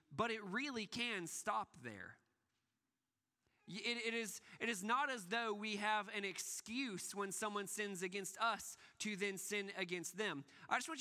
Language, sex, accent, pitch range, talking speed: English, male, American, 165-210 Hz, 170 wpm